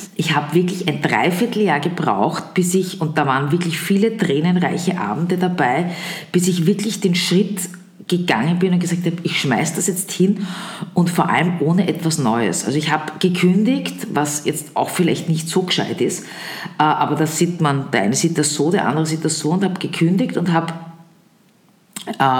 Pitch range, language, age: 165-200 Hz, German, 50-69